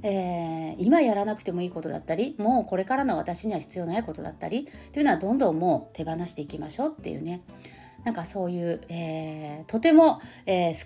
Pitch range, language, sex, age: 175-270 Hz, Japanese, female, 30-49